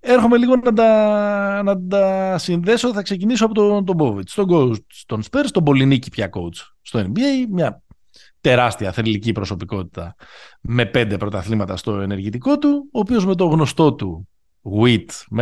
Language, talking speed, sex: Greek, 155 wpm, male